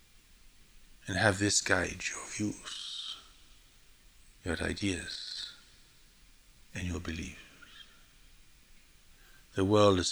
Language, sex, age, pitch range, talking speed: English, male, 60-79, 90-105 Hz, 85 wpm